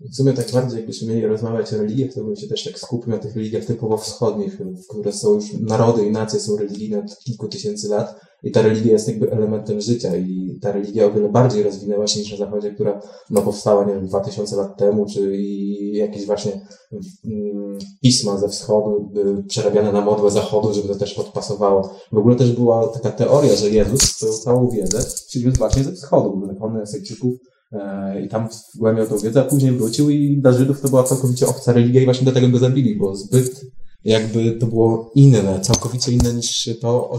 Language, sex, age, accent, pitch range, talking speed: Polish, male, 20-39, native, 105-120 Hz, 195 wpm